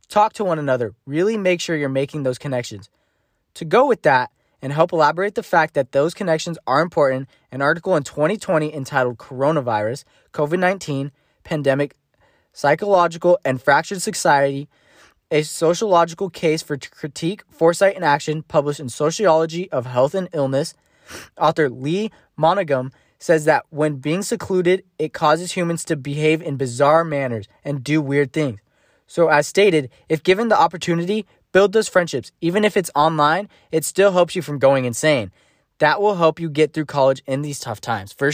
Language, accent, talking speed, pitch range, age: English, American, 165 wpm, 140-180 Hz, 20-39